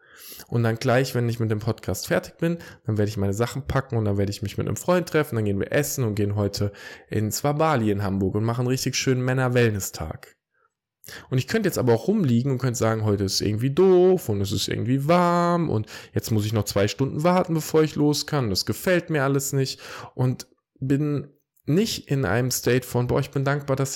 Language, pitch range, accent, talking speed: German, 115-150 Hz, German, 230 wpm